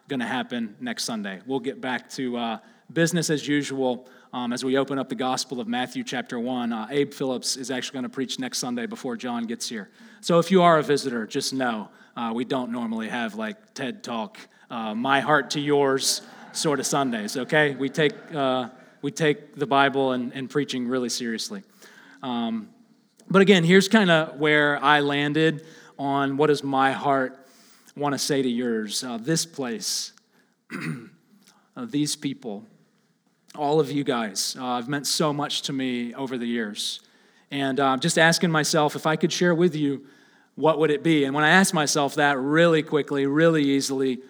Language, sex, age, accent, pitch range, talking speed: English, male, 30-49, American, 135-215 Hz, 185 wpm